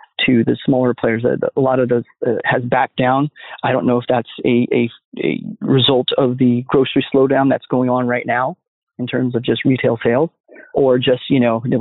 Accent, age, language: American, 30-49, English